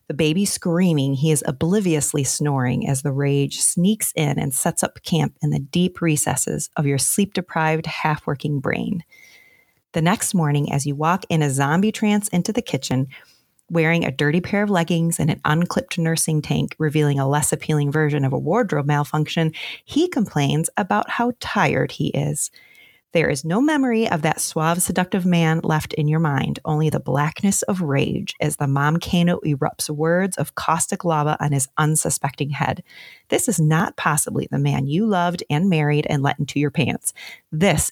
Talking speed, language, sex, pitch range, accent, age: 175 wpm, English, female, 145-185 Hz, American, 30-49